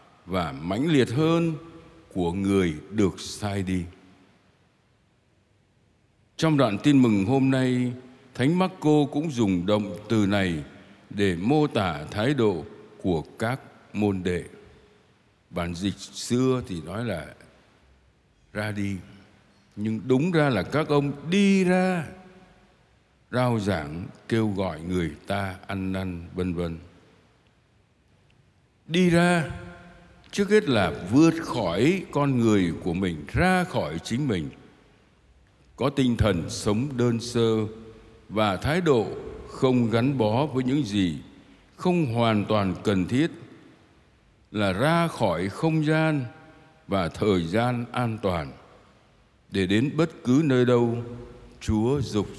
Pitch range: 100-140 Hz